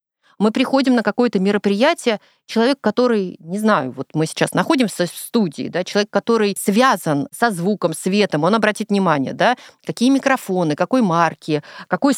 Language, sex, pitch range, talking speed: Russian, female, 170-235 Hz, 150 wpm